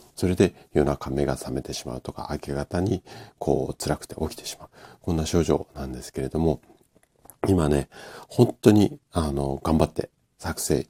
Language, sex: Japanese, male